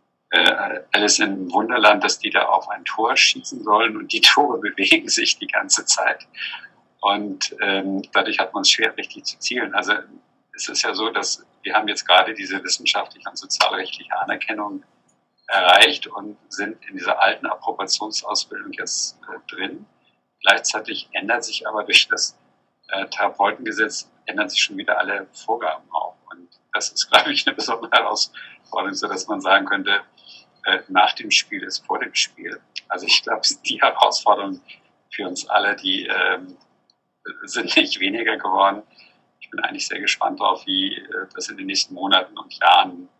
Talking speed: 160 wpm